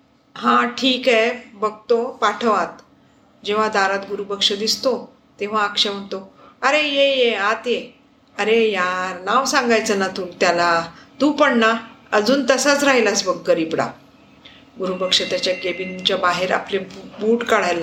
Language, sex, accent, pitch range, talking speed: Marathi, female, native, 195-255 Hz, 140 wpm